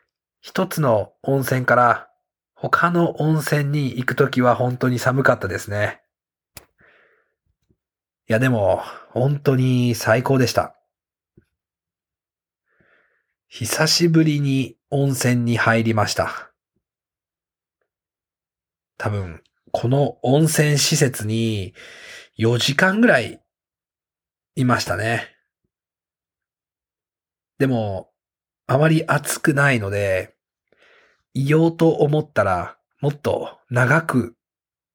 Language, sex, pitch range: English, male, 100-145 Hz